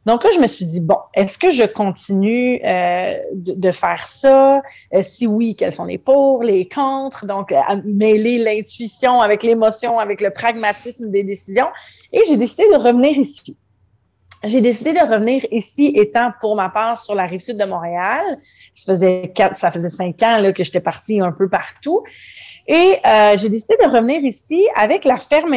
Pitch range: 190-250 Hz